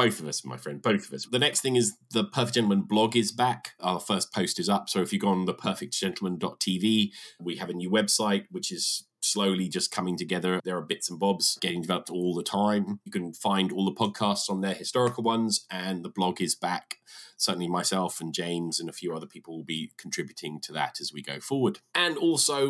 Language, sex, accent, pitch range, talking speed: English, male, British, 85-110 Hz, 225 wpm